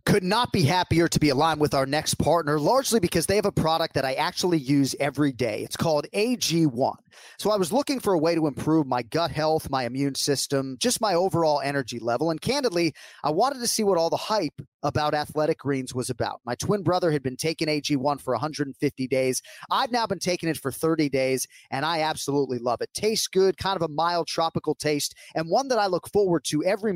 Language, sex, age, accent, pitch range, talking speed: English, male, 30-49, American, 145-185 Hz, 225 wpm